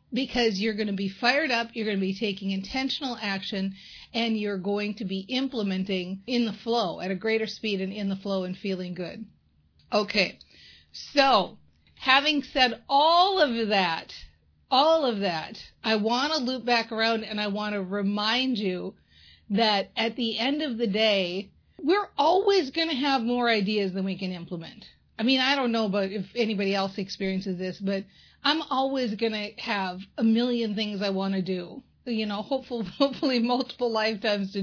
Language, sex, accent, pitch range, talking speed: English, female, American, 200-270 Hz, 180 wpm